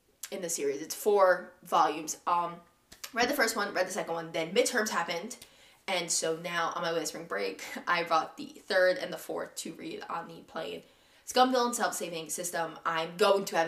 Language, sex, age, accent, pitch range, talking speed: English, female, 20-39, American, 180-265 Hz, 205 wpm